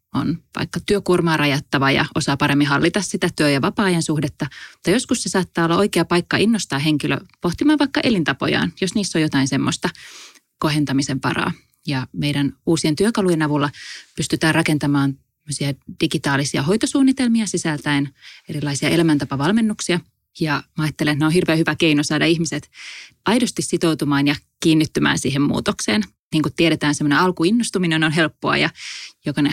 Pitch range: 145-175 Hz